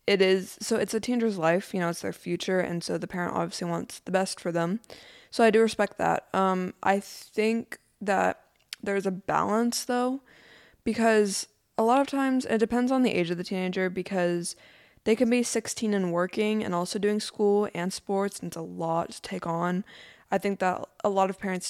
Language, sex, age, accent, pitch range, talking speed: English, female, 20-39, American, 175-210 Hz, 205 wpm